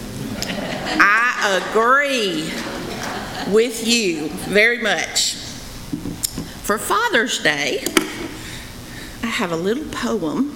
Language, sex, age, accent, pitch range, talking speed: English, female, 50-69, American, 185-235 Hz, 80 wpm